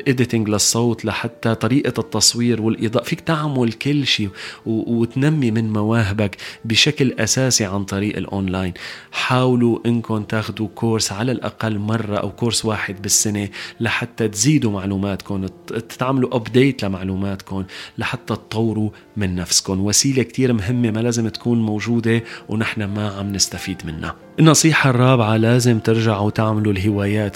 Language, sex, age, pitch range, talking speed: Arabic, male, 30-49, 105-130 Hz, 125 wpm